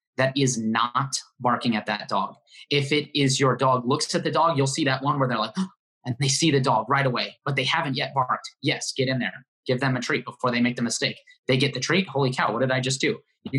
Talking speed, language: 265 wpm, English